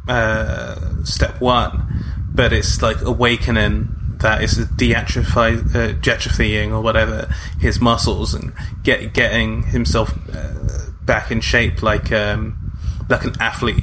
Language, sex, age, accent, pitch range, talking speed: English, male, 20-39, British, 105-120 Hz, 120 wpm